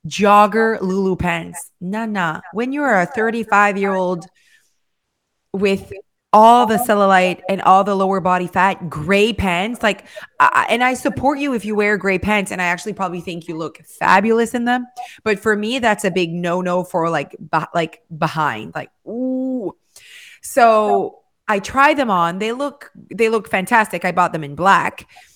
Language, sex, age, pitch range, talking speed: English, female, 20-39, 185-240 Hz, 170 wpm